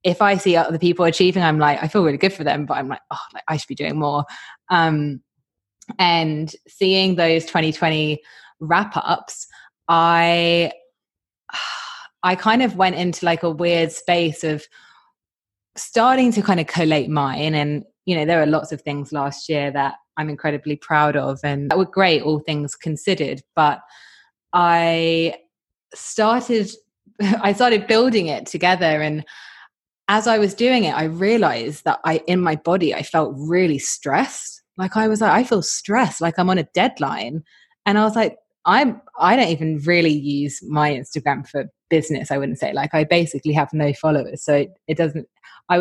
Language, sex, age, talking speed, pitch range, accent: English, female, 20-39, 175 wpm, 150-180 Hz, British